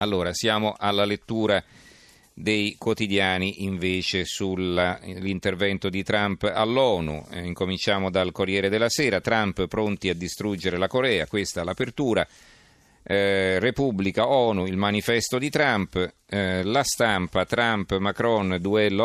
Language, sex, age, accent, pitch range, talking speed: Italian, male, 40-59, native, 95-115 Hz, 125 wpm